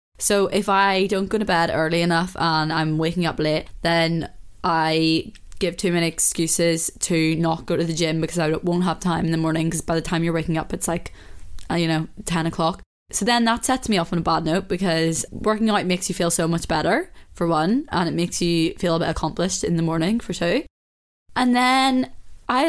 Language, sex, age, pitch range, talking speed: English, female, 10-29, 170-210 Hz, 220 wpm